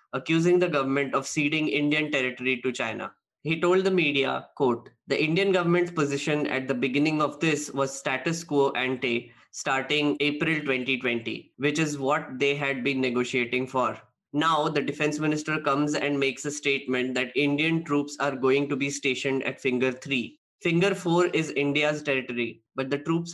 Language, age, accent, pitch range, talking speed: English, 20-39, Indian, 130-155 Hz, 170 wpm